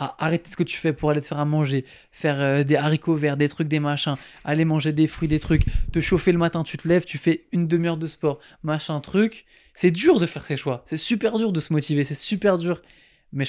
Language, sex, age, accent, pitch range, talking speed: French, male, 20-39, French, 135-160 Hz, 255 wpm